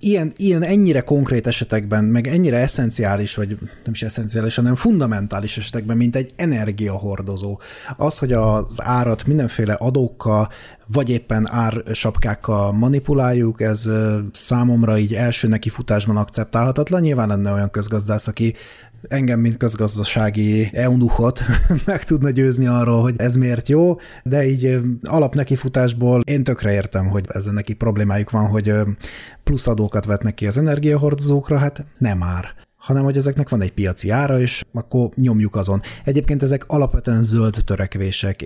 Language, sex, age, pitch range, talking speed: Hungarian, male, 30-49, 105-130 Hz, 140 wpm